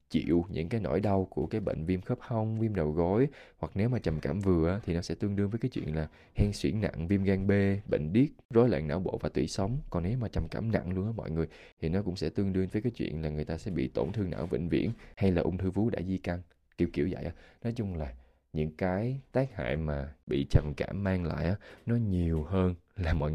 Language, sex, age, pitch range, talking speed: Vietnamese, male, 20-39, 80-105 Hz, 270 wpm